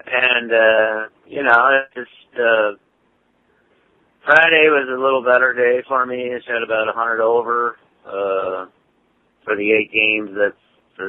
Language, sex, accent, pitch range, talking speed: English, male, American, 100-120 Hz, 150 wpm